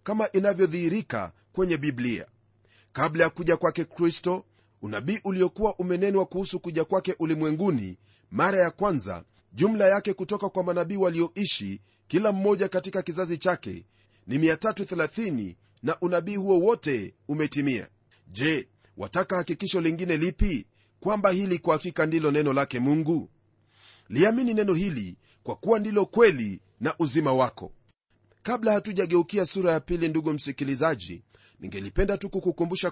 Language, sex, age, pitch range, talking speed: Swahili, male, 40-59, 120-190 Hz, 125 wpm